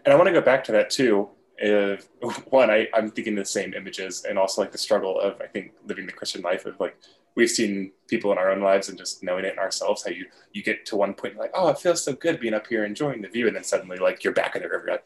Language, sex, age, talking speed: English, male, 20-39, 295 wpm